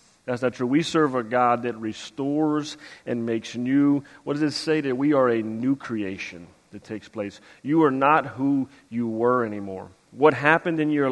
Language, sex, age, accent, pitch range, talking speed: English, male, 40-59, American, 115-145 Hz, 195 wpm